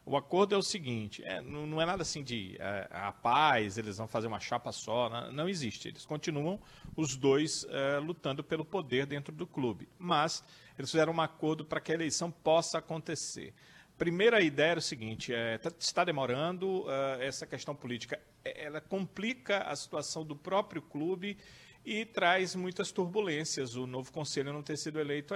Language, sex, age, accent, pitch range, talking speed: Portuguese, male, 40-59, Brazilian, 135-175 Hz, 185 wpm